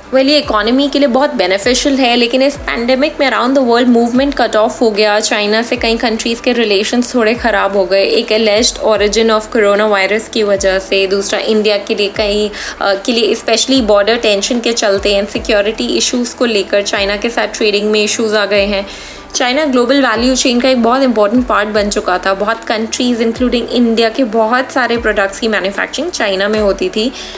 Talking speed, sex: 195 wpm, female